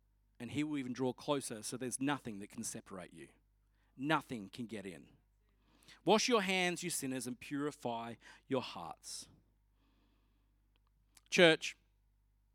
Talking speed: 130 wpm